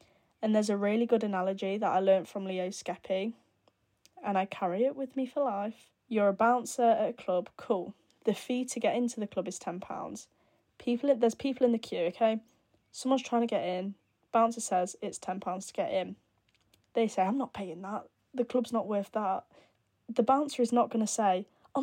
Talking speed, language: 205 wpm, English